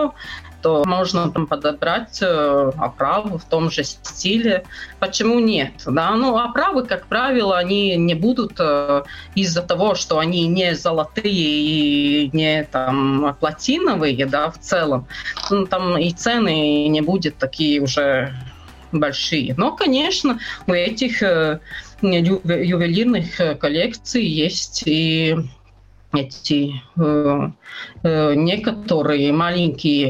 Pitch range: 150-195 Hz